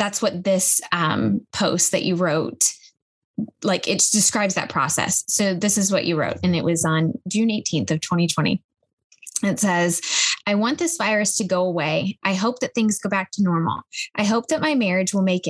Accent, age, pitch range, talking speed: American, 10-29, 185-220 Hz, 195 wpm